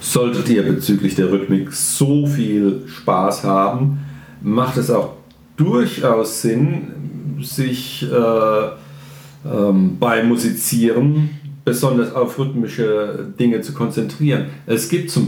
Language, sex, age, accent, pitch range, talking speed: German, male, 50-69, German, 110-145 Hz, 110 wpm